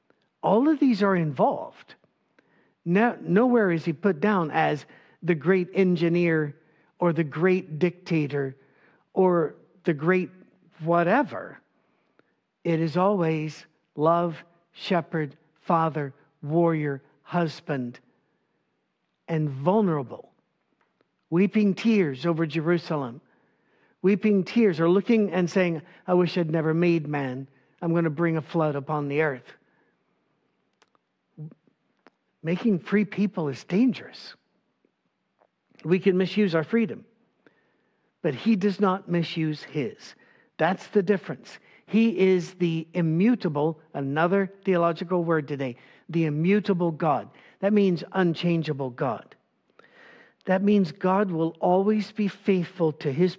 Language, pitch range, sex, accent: English, 155-190 Hz, male, American